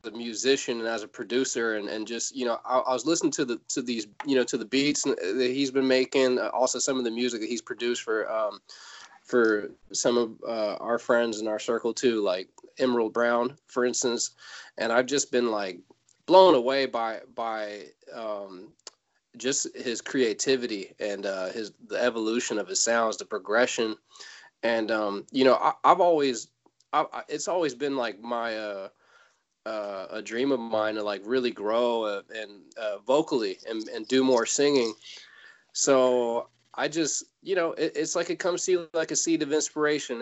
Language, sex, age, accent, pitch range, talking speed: English, male, 20-39, American, 115-135 Hz, 190 wpm